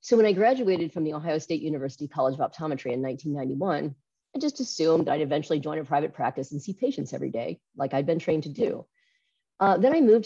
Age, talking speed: 40-59, 220 wpm